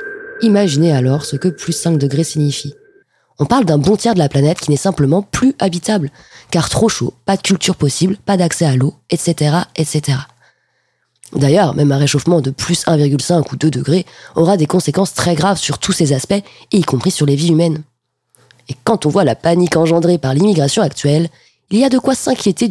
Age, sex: 20-39, female